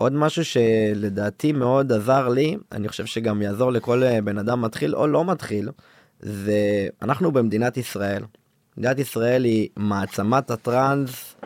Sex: male